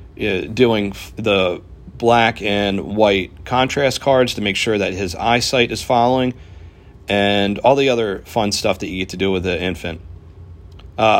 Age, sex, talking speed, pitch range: 40-59, male, 160 wpm, 95-115 Hz